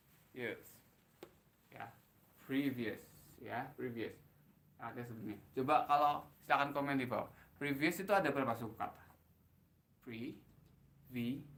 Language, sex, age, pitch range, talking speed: Indonesian, male, 20-39, 120-170 Hz, 125 wpm